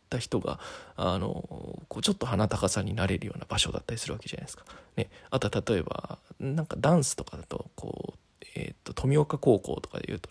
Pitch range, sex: 105-140 Hz, male